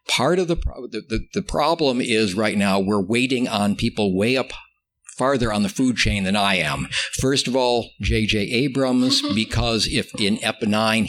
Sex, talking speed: male, 190 wpm